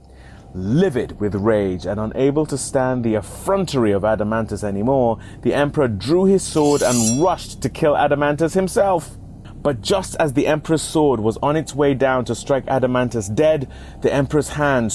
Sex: male